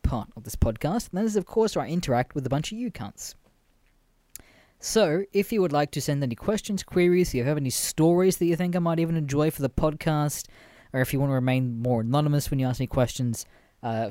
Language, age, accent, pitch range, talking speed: English, 20-39, Australian, 125-175 Hz, 245 wpm